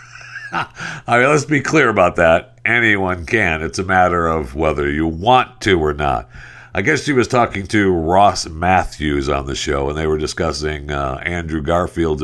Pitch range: 80-120 Hz